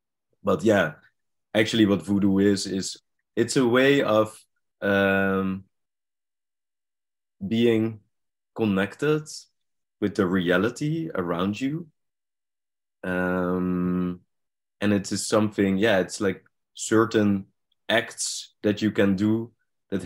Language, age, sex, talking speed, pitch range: French, 20-39, male, 100 wpm, 90-105 Hz